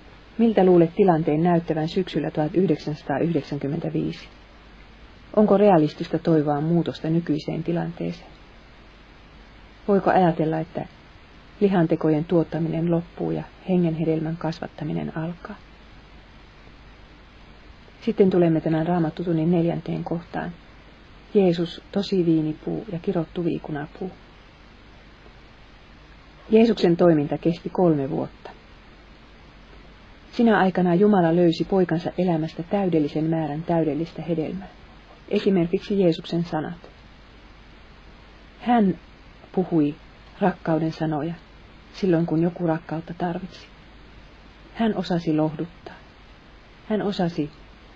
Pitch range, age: 155-185 Hz, 40-59